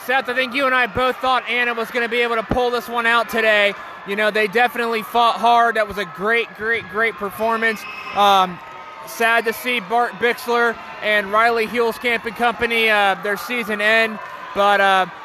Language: English